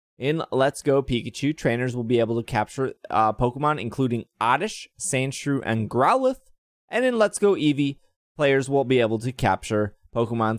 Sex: male